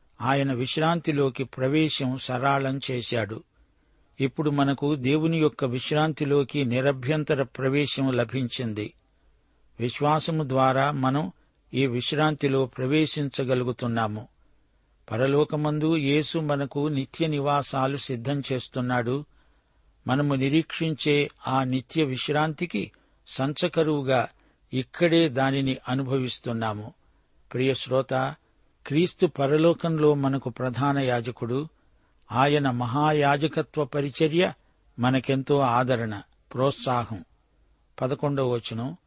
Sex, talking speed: male, 70 wpm